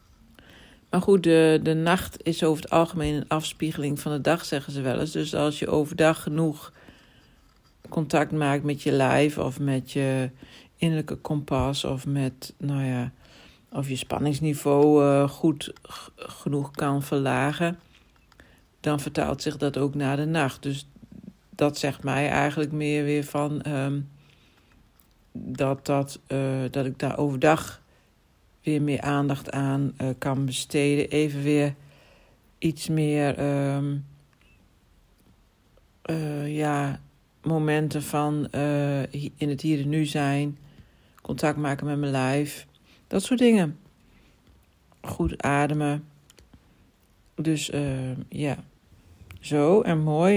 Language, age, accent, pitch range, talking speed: Dutch, 60-79, Dutch, 140-155 Hz, 125 wpm